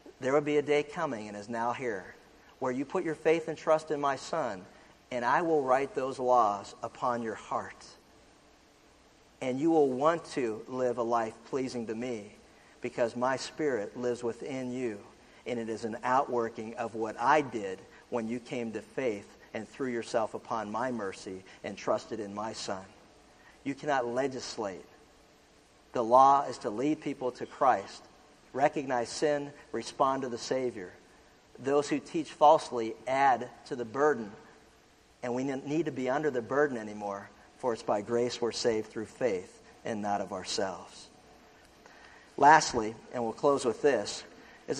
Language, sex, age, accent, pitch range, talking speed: English, male, 50-69, American, 120-155 Hz, 165 wpm